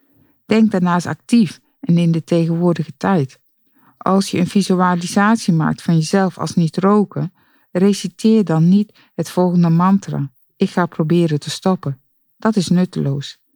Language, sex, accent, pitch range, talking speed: Dutch, female, Dutch, 155-195 Hz, 140 wpm